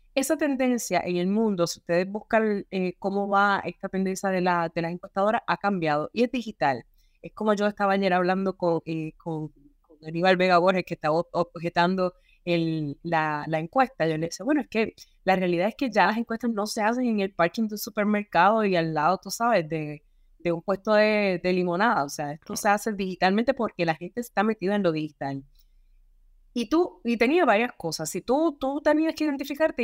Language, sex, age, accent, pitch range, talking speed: Spanish, female, 20-39, Venezuelan, 175-235 Hz, 195 wpm